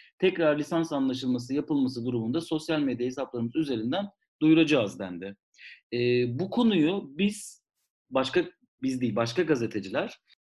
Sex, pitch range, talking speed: male, 125-165 Hz, 115 wpm